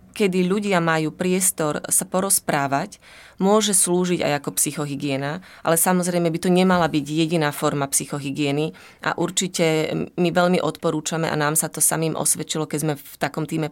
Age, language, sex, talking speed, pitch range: 30-49, Slovak, female, 160 wpm, 150-175 Hz